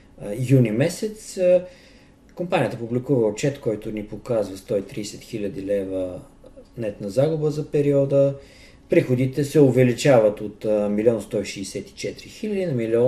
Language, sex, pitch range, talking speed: Bulgarian, male, 105-135 Hz, 105 wpm